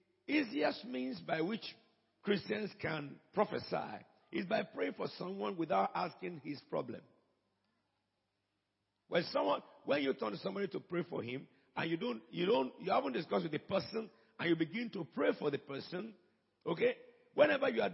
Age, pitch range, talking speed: 50-69, 135-175 Hz, 165 wpm